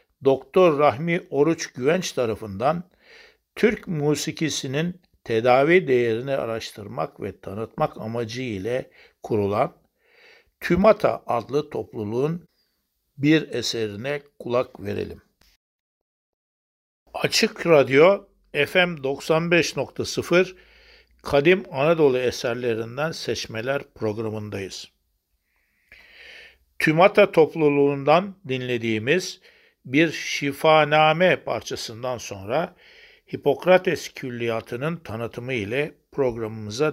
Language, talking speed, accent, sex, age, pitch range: Turkish, 70 wpm, native, male, 60-79, 115-170 Hz